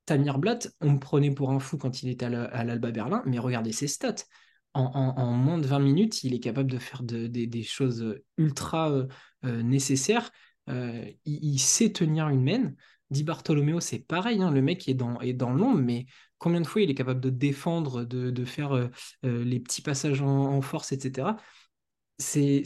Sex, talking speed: male, 205 wpm